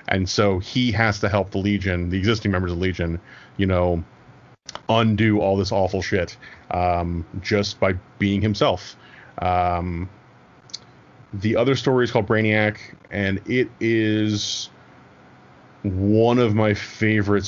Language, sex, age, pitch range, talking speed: English, male, 30-49, 90-110 Hz, 135 wpm